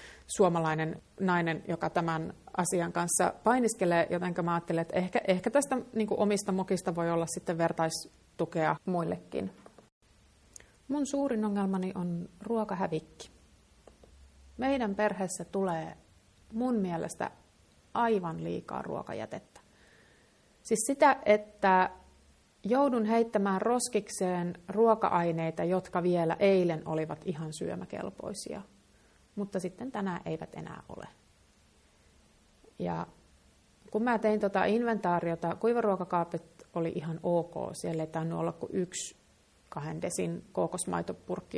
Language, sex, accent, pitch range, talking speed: Finnish, female, native, 165-205 Hz, 105 wpm